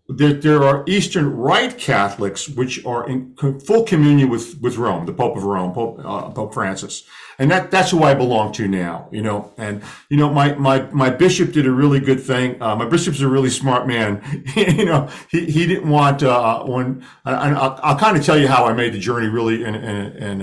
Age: 50-69